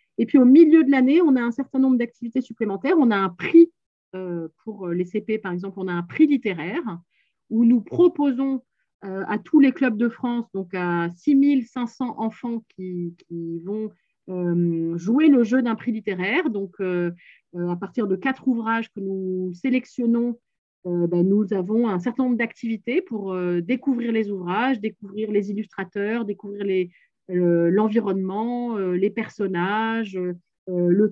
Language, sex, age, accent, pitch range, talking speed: French, female, 30-49, French, 190-255 Hz, 170 wpm